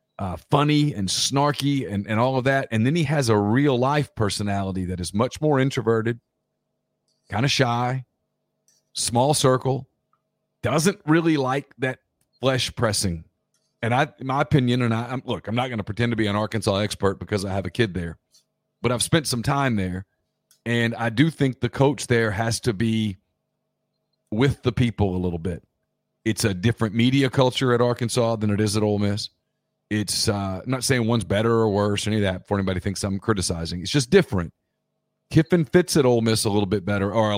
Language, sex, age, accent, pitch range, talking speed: English, male, 40-59, American, 100-130 Hz, 195 wpm